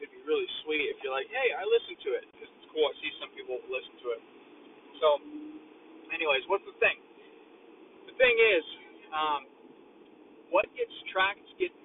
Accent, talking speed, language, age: American, 165 wpm, English, 30-49